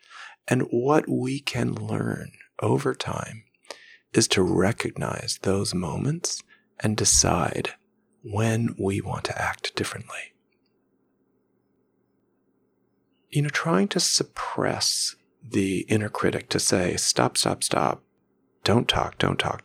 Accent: American